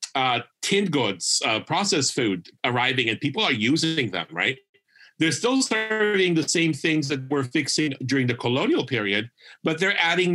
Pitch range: 120-155 Hz